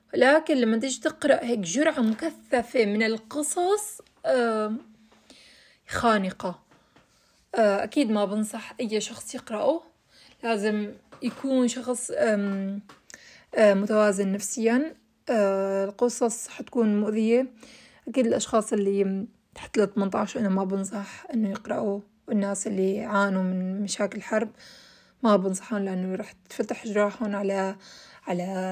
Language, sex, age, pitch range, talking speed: Arabic, female, 20-39, 210-250 Hz, 100 wpm